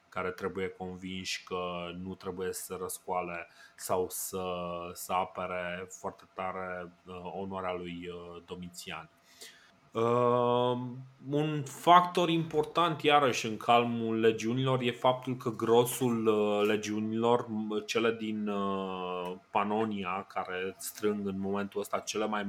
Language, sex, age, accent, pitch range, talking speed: Romanian, male, 20-39, native, 100-130 Hz, 105 wpm